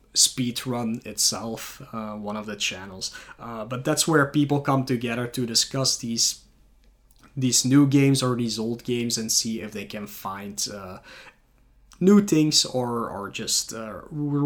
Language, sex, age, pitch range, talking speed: English, male, 20-39, 115-145 Hz, 155 wpm